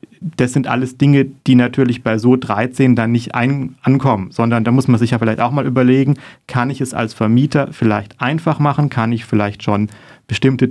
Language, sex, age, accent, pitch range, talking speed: German, male, 40-59, German, 110-130 Hz, 195 wpm